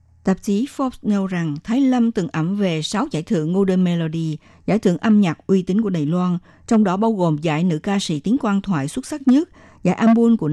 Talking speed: 235 wpm